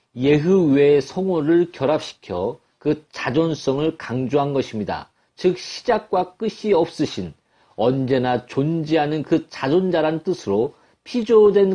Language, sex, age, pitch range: Korean, male, 40-59, 135-185 Hz